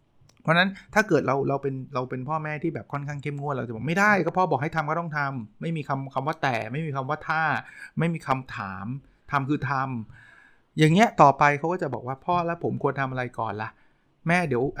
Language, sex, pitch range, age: Thai, male, 120-150 Hz, 20-39